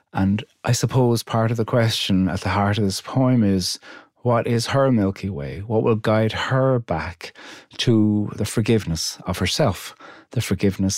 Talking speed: 170 wpm